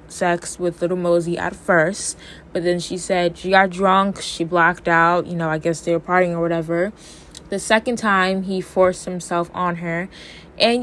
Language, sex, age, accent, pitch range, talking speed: English, female, 10-29, American, 170-200 Hz, 190 wpm